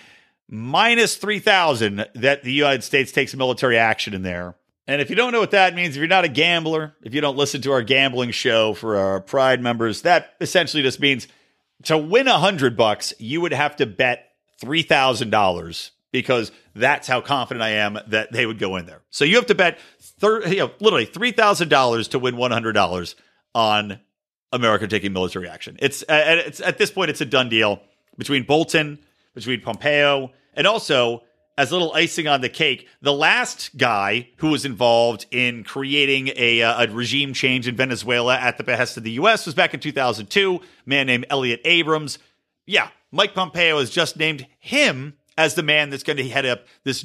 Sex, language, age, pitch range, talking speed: male, English, 40-59, 120-170 Hz, 190 wpm